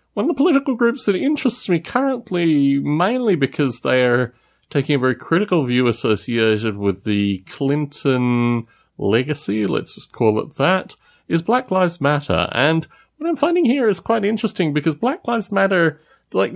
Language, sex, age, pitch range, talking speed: English, male, 30-49, 120-185 Hz, 165 wpm